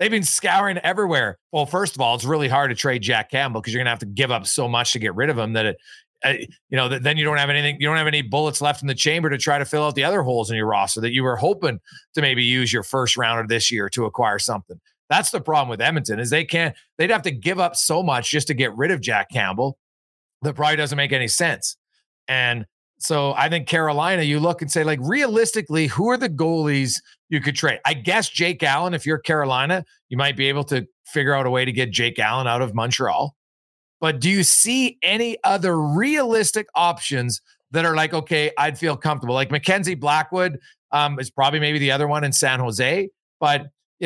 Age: 40-59